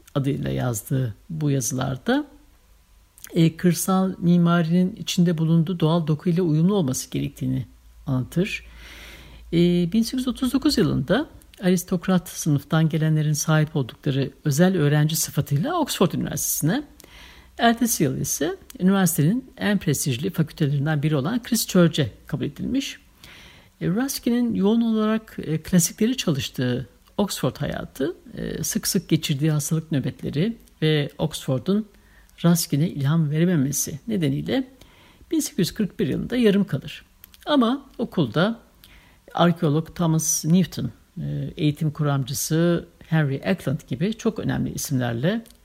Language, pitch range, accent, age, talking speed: Turkish, 145-195 Hz, native, 60-79, 100 wpm